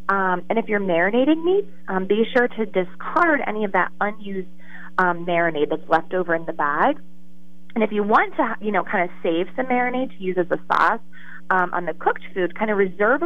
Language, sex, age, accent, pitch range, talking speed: English, female, 30-49, American, 170-220 Hz, 215 wpm